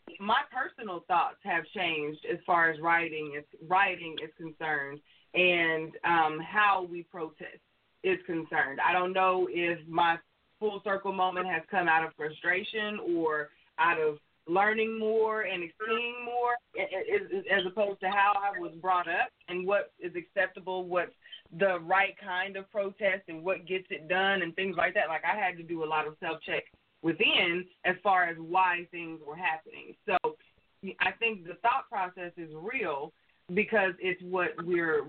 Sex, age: female, 20-39